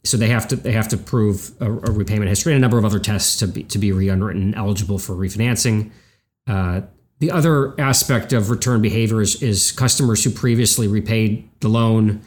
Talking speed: 200 wpm